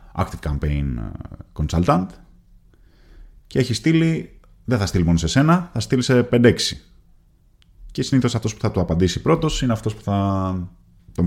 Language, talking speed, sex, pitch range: Greek, 155 wpm, male, 85-110 Hz